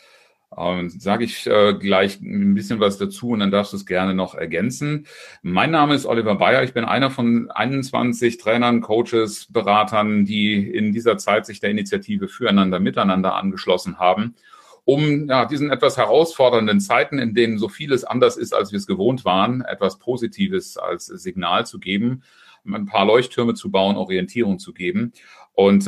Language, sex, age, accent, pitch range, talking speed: German, male, 40-59, German, 100-145 Hz, 165 wpm